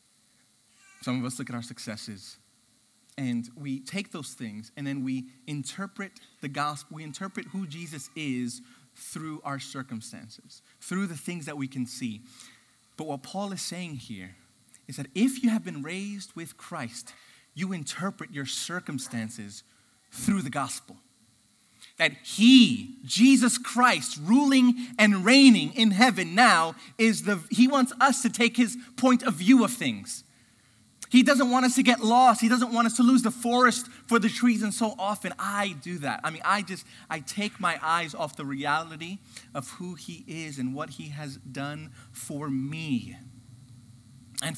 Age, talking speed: 30-49, 170 wpm